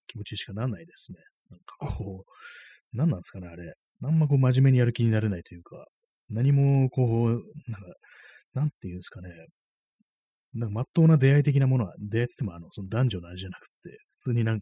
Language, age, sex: Japanese, 30-49, male